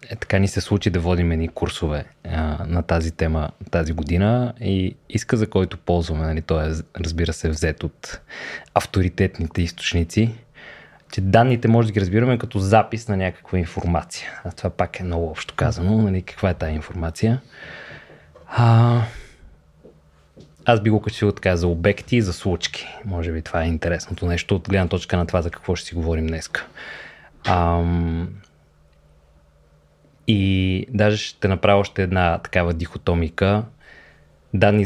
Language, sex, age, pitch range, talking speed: Bulgarian, male, 20-39, 85-105 Hz, 155 wpm